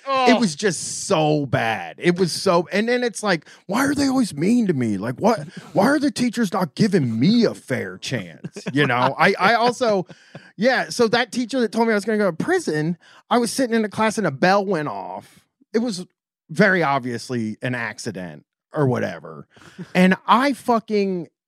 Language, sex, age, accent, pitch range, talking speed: English, male, 30-49, American, 140-220 Hz, 200 wpm